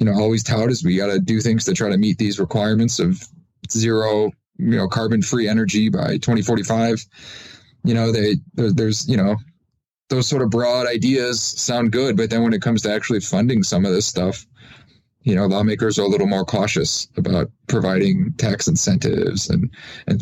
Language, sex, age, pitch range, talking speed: English, male, 20-39, 105-120 Hz, 190 wpm